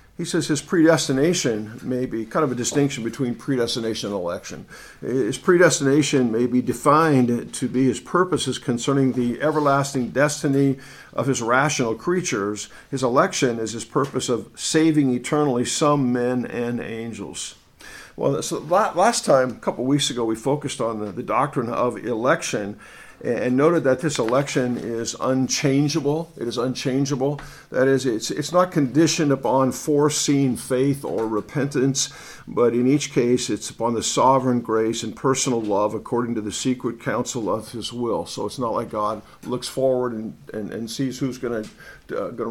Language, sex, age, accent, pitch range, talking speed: English, male, 50-69, American, 120-145 Hz, 160 wpm